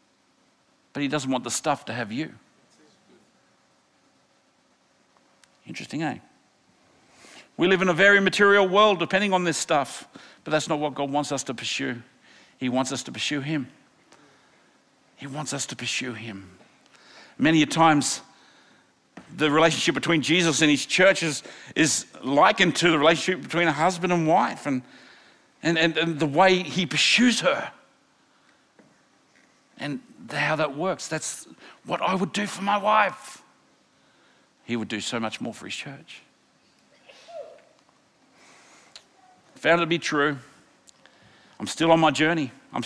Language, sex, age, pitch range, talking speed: English, male, 50-69, 150-200 Hz, 145 wpm